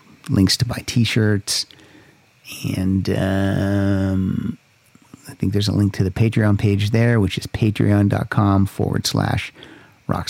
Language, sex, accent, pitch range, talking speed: English, male, American, 100-125 Hz, 130 wpm